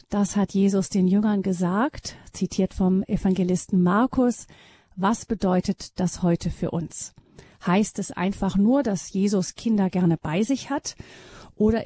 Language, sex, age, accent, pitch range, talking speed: German, female, 40-59, German, 190-225 Hz, 140 wpm